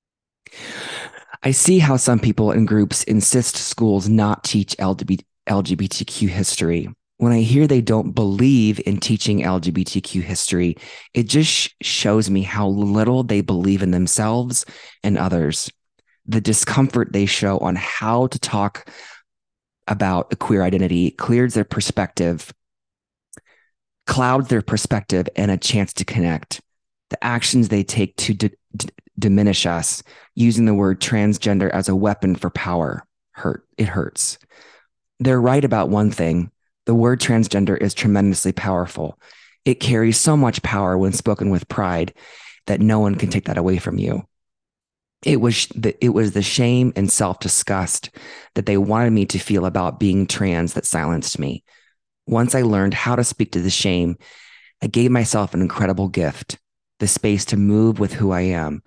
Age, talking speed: 20-39, 155 wpm